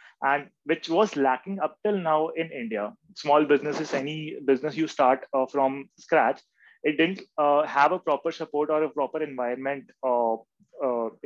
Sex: male